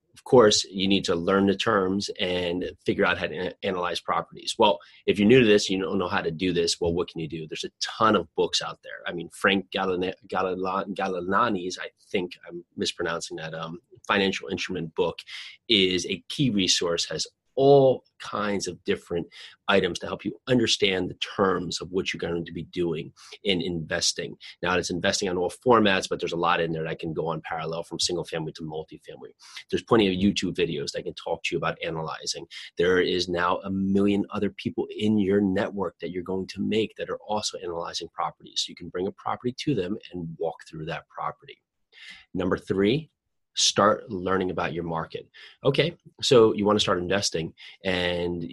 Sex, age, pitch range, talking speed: male, 30-49, 85-100 Hz, 195 wpm